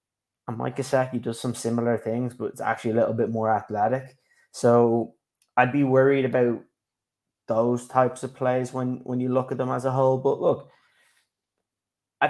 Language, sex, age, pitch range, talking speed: English, male, 20-39, 115-130 Hz, 175 wpm